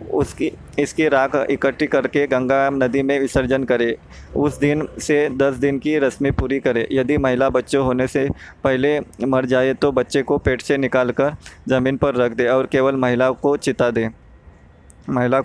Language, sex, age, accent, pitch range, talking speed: Hindi, male, 20-39, native, 125-145 Hz, 170 wpm